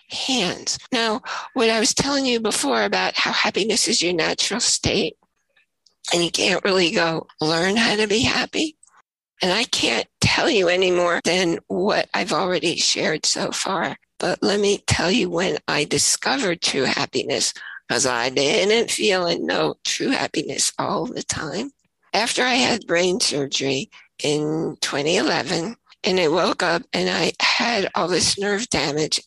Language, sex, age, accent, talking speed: English, female, 60-79, American, 160 wpm